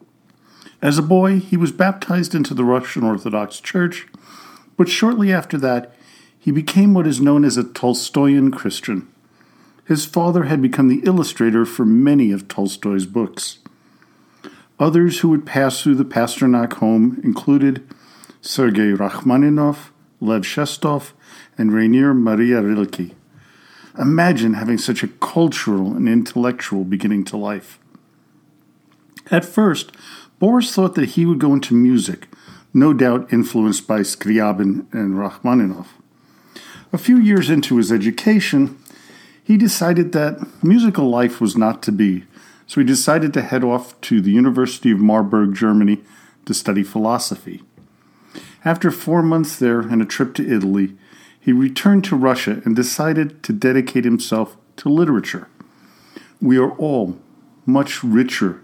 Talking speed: 135 wpm